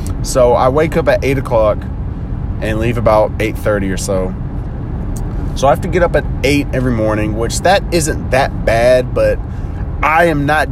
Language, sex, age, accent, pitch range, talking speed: English, male, 30-49, American, 100-125 Hz, 180 wpm